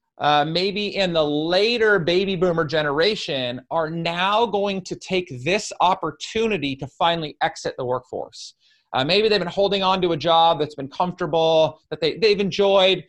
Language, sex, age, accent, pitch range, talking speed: English, male, 30-49, American, 150-200 Hz, 160 wpm